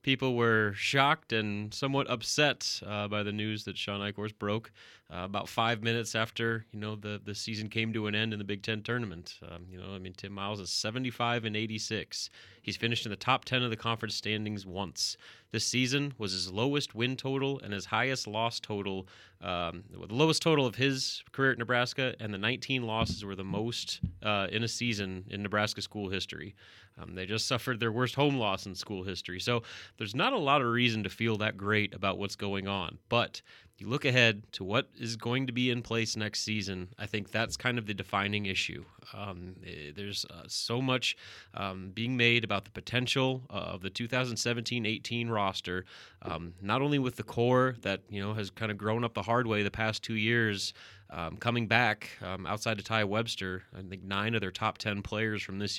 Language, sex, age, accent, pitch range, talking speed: English, male, 30-49, American, 100-120 Hz, 210 wpm